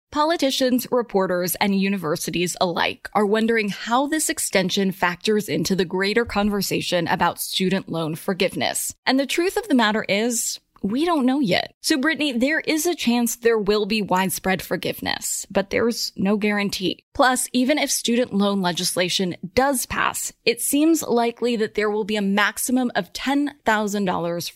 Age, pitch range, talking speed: 20-39, 185-240 Hz, 155 wpm